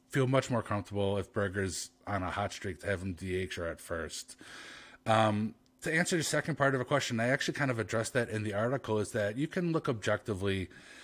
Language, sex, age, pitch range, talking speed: English, male, 30-49, 100-130 Hz, 215 wpm